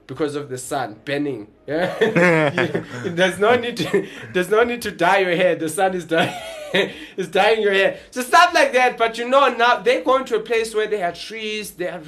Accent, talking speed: South African, 220 wpm